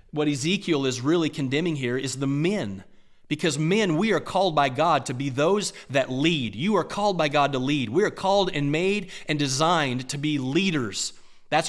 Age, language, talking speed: 30-49, English, 200 wpm